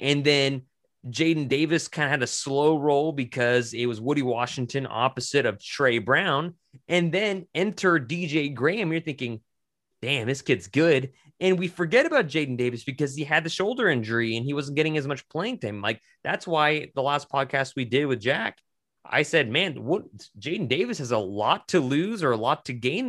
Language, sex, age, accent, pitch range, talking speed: English, male, 20-39, American, 120-155 Hz, 200 wpm